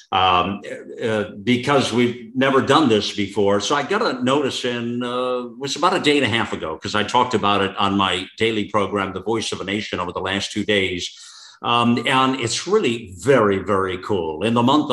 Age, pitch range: 50-69, 105-135 Hz